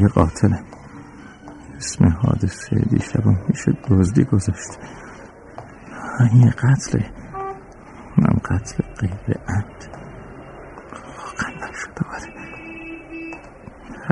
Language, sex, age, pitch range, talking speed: Persian, male, 50-69, 95-115 Hz, 70 wpm